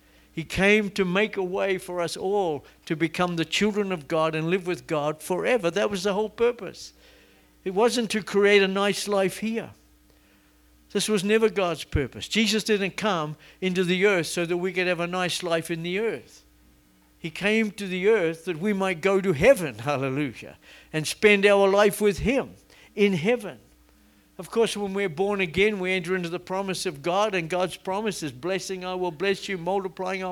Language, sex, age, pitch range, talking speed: English, male, 60-79, 160-205 Hz, 195 wpm